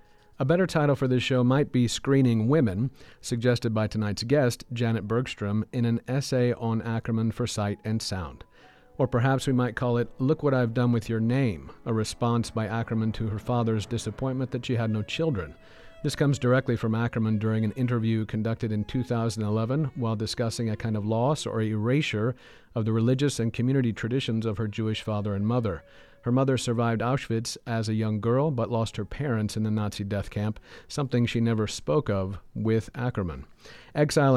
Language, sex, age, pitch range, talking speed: English, male, 50-69, 110-130 Hz, 185 wpm